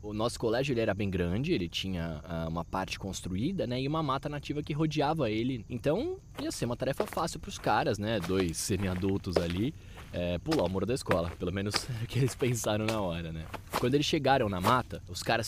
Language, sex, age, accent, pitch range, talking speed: Portuguese, male, 20-39, Brazilian, 90-130 Hz, 215 wpm